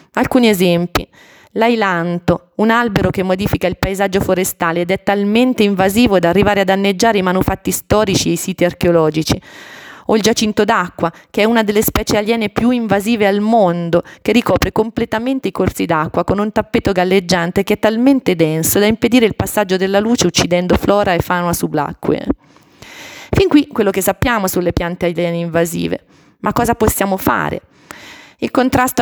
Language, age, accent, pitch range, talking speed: Italian, 30-49, native, 175-230 Hz, 165 wpm